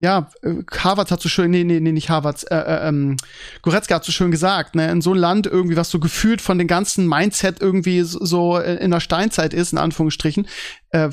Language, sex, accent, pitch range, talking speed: German, male, German, 165-200 Hz, 215 wpm